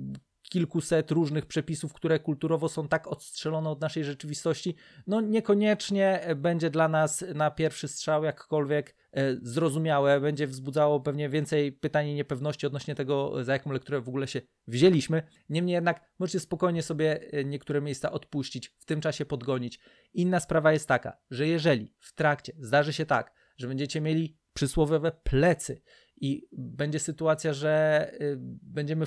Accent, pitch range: native, 145-160 Hz